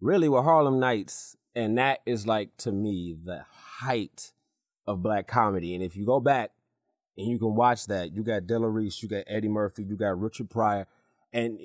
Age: 30-49